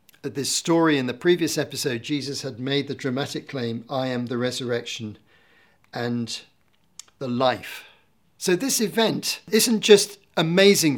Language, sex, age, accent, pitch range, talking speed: English, male, 50-69, British, 120-150 Hz, 135 wpm